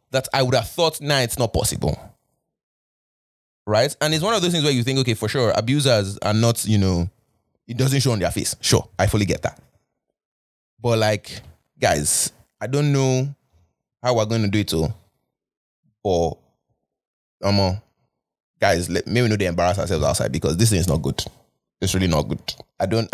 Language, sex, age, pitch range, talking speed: English, male, 20-39, 95-130 Hz, 185 wpm